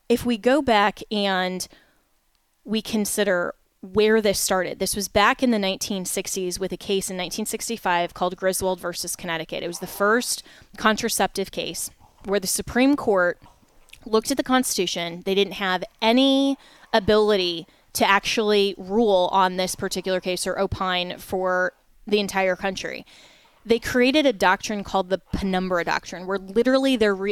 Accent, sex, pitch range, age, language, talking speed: American, female, 190-225 Hz, 20-39, English, 150 wpm